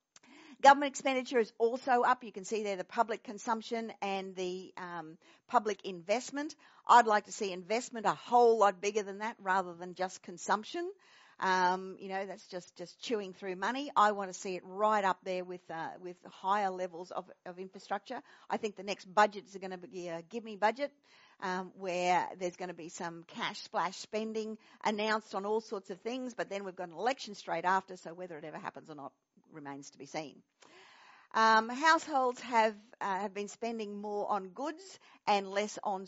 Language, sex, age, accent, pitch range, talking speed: English, female, 50-69, Australian, 180-220 Hz, 195 wpm